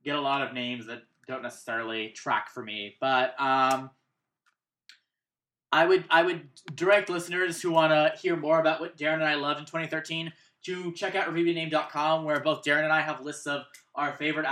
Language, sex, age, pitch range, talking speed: English, male, 20-39, 140-165 Hz, 190 wpm